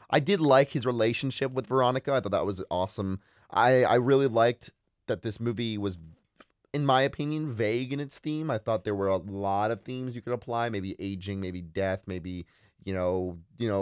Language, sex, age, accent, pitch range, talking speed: English, male, 30-49, American, 95-125 Hz, 205 wpm